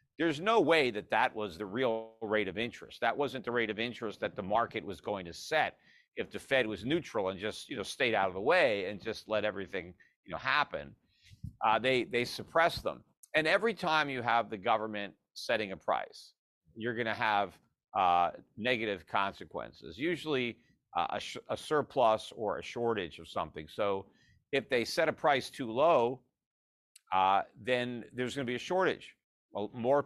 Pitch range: 105-120 Hz